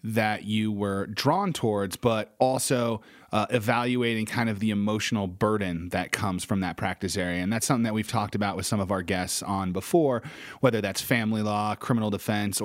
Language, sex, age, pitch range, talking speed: English, male, 30-49, 100-115 Hz, 190 wpm